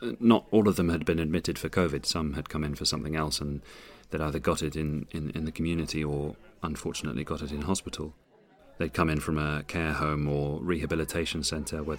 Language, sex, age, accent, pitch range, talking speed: English, male, 30-49, British, 75-85 Hz, 215 wpm